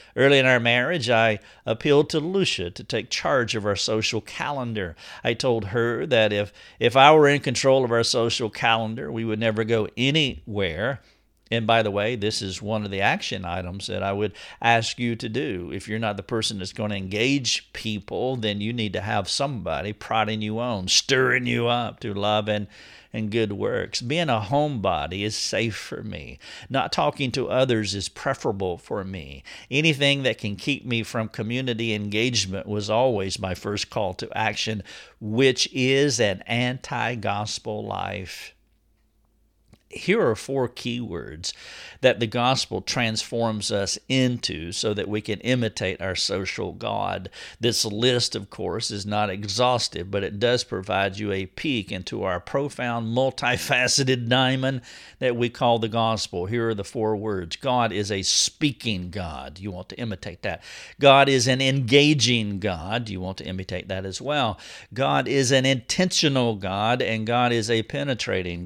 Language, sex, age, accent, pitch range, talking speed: English, male, 50-69, American, 105-125 Hz, 170 wpm